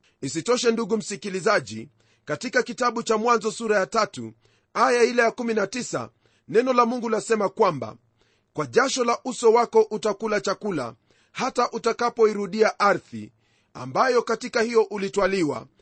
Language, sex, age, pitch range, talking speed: Swahili, male, 40-59, 165-235 Hz, 125 wpm